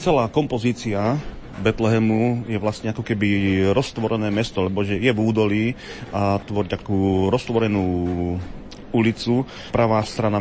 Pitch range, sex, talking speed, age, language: 95-115 Hz, male, 115 wpm, 40-59, Slovak